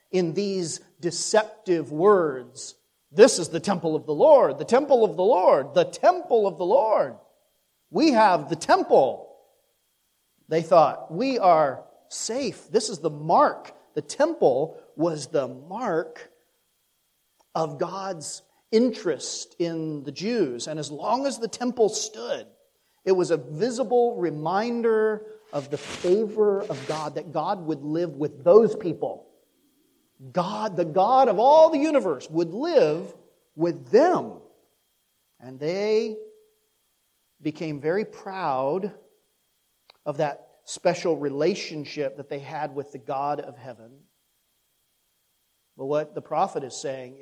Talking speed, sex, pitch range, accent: 130 wpm, male, 155-235 Hz, American